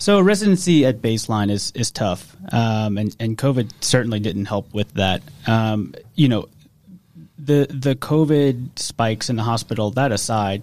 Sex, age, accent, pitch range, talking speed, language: male, 30-49, American, 105-130 Hz, 160 wpm, English